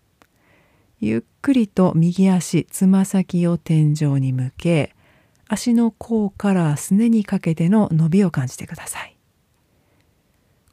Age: 40-59